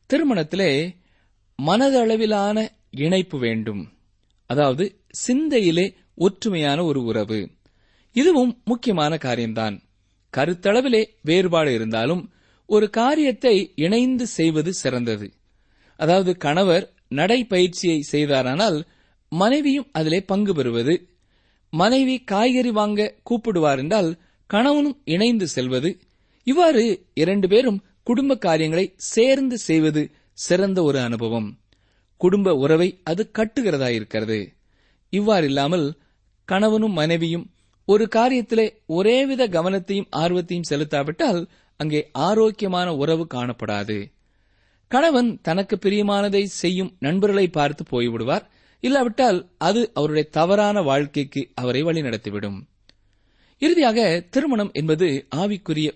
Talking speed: 85 wpm